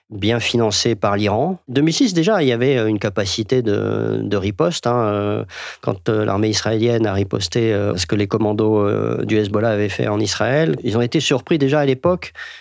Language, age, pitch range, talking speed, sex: French, 40-59, 105-135 Hz, 175 wpm, male